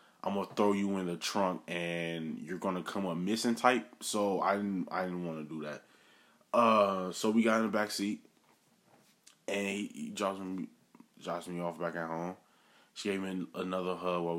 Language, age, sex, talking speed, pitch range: English, 20-39, male, 210 wpm, 90-115 Hz